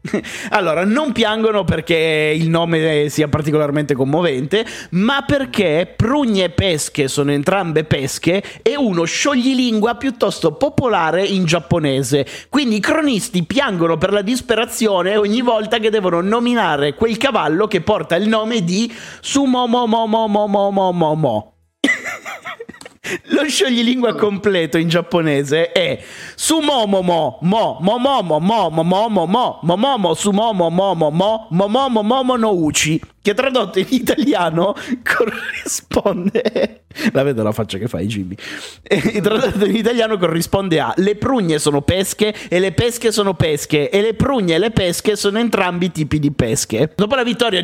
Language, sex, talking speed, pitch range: Italian, male, 120 wpm, 165-230 Hz